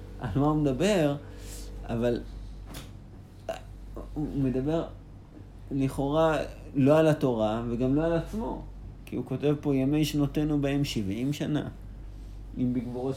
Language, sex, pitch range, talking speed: Hebrew, male, 100-135 Hz, 120 wpm